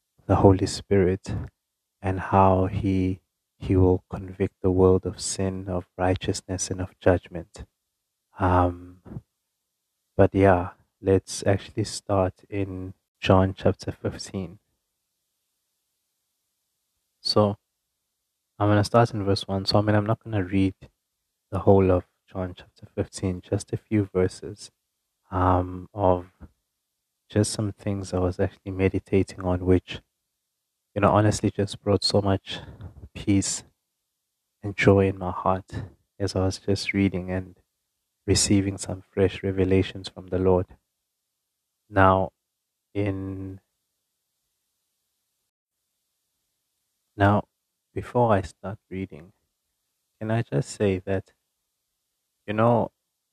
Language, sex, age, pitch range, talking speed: English, male, 30-49, 95-105 Hz, 120 wpm